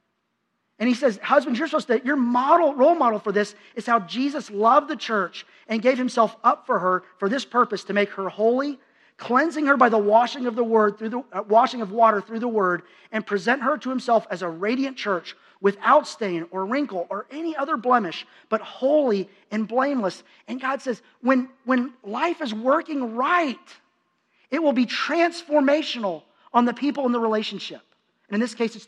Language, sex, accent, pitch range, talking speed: English, male, American, 210-270 Hz, 195 wpm